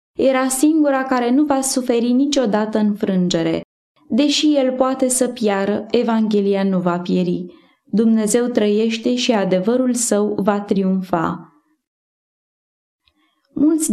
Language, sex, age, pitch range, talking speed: Romanian, female, 20-39, 205-260 Hz, 110 wpm